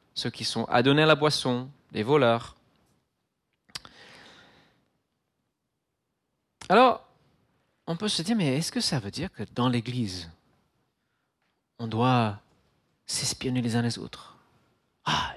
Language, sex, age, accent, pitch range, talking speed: French, male, 40-59, French, 125-170 Hz, 120 wpm